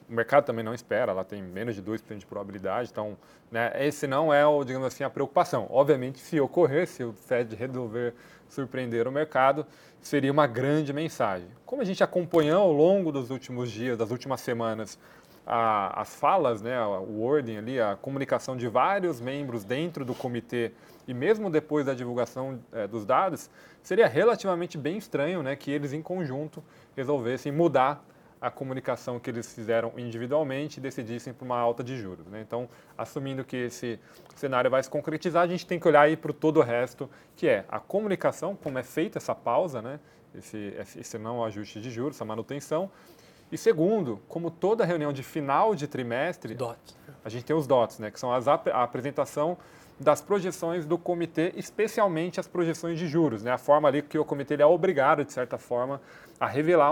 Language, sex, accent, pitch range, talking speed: Portuguese, male, Brazilian, 120-155 Hz, 185 wpm